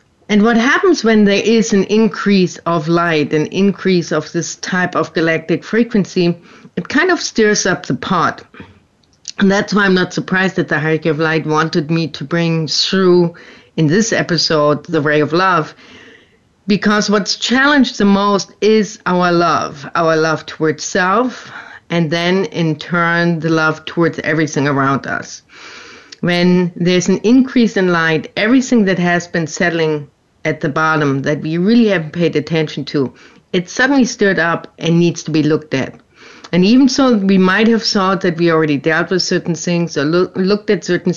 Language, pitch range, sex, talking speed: English, 160-210 Hz, female, 175 wpm